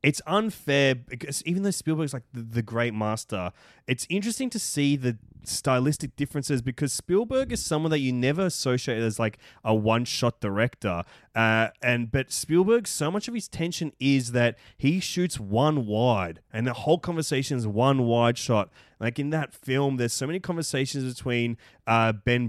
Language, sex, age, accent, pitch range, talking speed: English, male, 20-39, Australian, 110-140 Hz, 175 wpm